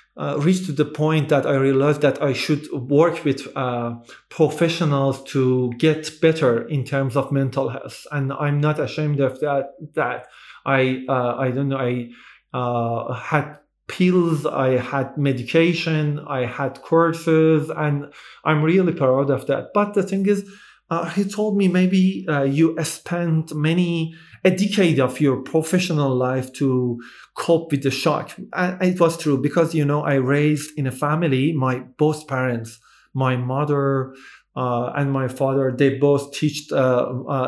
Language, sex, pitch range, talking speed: English, male, 135-160 Hz, 160 wpm